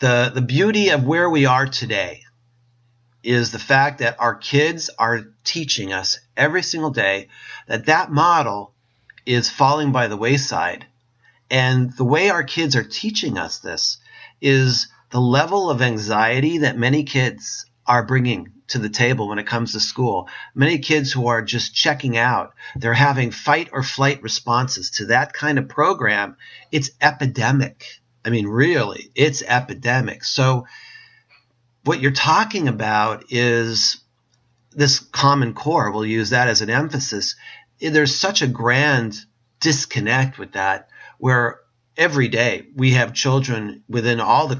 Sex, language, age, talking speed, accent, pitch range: male, English, 40-59, 150 wpm, American, 120-145 Hz